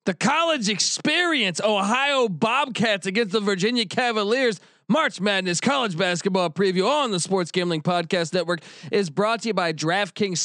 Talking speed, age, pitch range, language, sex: 150 wpm, 30-49, 165-220 Hz, English, male